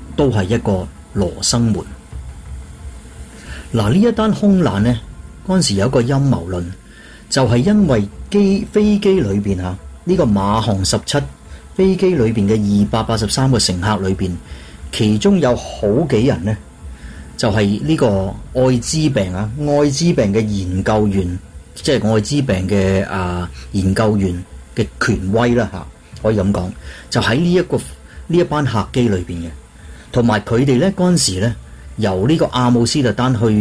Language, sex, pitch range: Chinese, male, 95-140 Hz